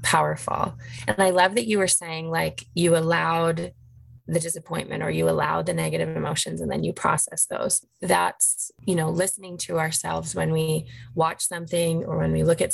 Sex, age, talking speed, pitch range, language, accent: female, 20-39, 185 wpm, 150-170 Hz, English, American